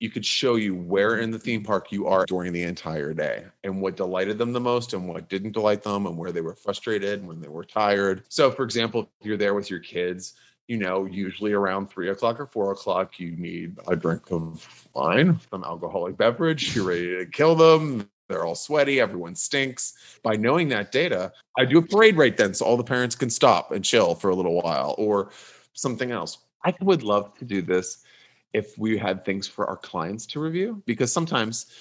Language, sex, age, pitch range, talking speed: English, male, 30-49, 100-130 Hz, 215 wpm